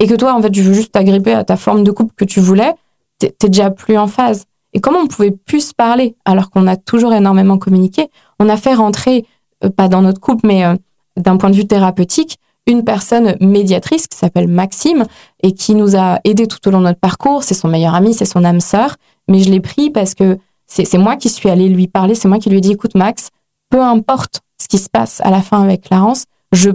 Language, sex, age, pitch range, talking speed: French, female, 20-39, 190-230 Hz, 245 wpm